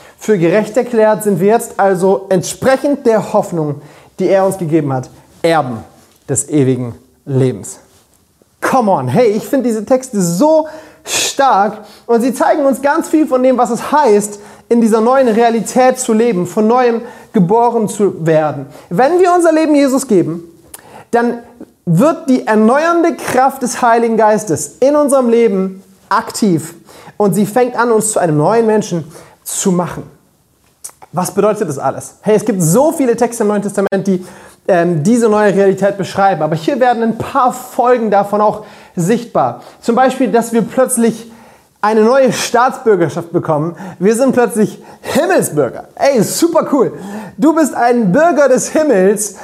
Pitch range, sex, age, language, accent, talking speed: 185-250 Hz, male, 30-49, German, German, 160 wpm